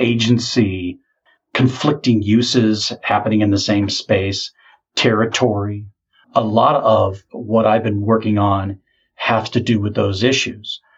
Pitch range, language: 105-125 Hz, English